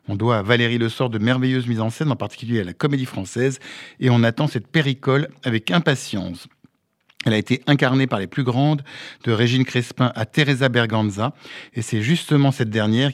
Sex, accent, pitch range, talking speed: male, French, 115-145 Hz, 195 wpm